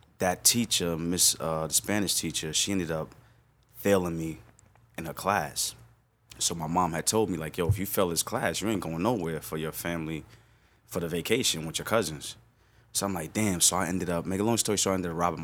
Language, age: English, 20-39